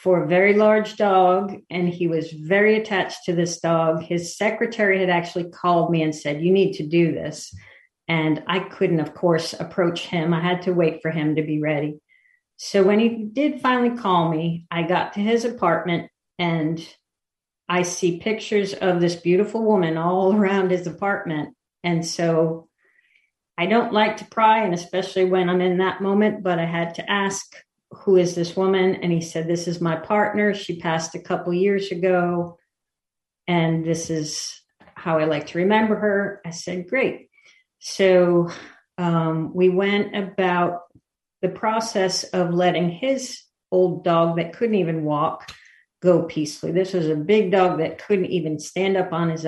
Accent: American